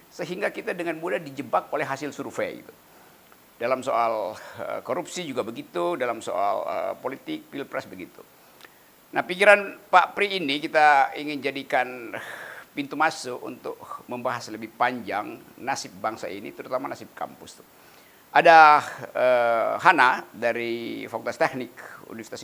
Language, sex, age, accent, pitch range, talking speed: Indonesian, male, 50-69, native, 130-175 Hz, 125 wpm